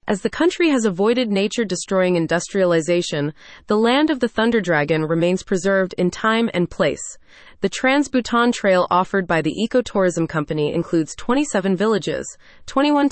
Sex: female